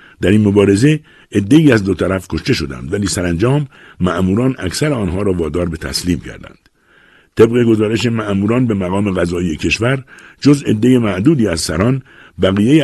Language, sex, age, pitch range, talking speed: Persian, male, 60-79, 85-125 Hz, 155 wpm